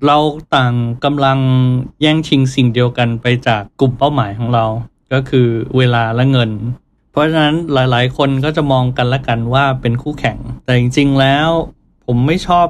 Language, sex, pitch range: Thai, male, 120-145 Hz